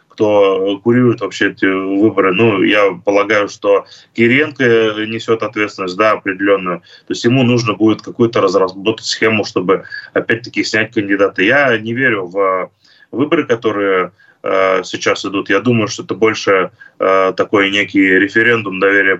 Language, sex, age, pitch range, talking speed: Russian, male, 20-39, 105-120 Hz, 140 wpm